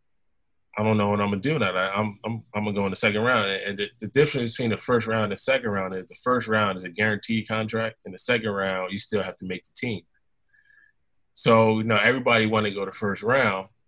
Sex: male